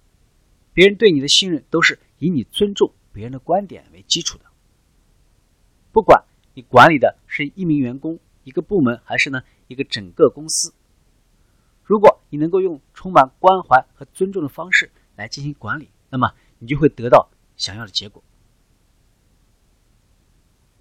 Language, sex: Chinese, male